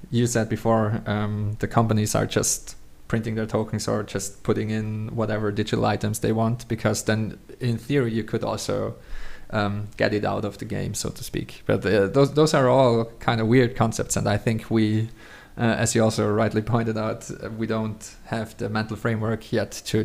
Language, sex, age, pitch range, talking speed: English, male, 20-39, 105-115 Hz, 200 wpm